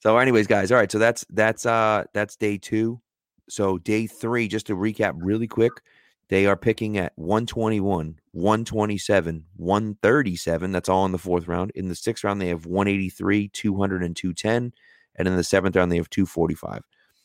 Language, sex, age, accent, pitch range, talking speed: English, male, 30-49, American, 90-105 Hz, 180 wpm